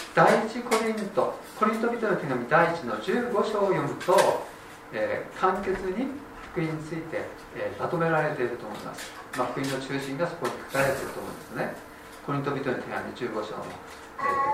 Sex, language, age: male, Japanese, 40-59